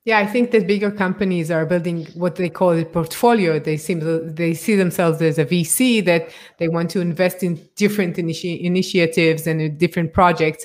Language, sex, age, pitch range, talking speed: English, female, 30-49, 165-195 Hz, 190 wpm